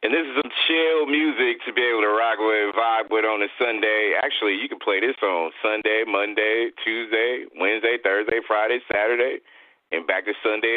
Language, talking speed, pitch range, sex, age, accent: English, 195 wpm, 120-165 Hz, male, 30-49, American